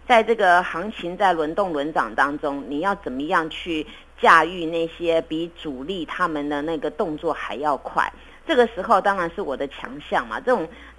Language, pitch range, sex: Chinese, 160-225 Hz, female